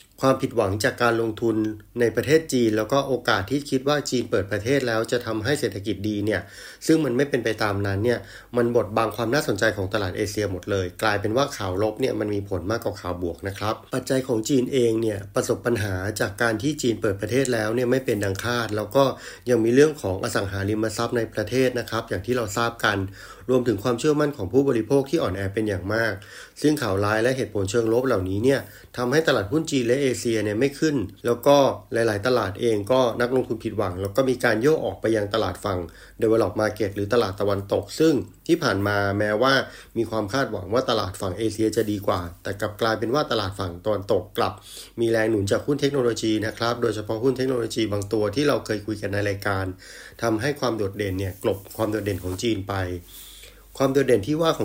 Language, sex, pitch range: Thai, male, 100-125 Hz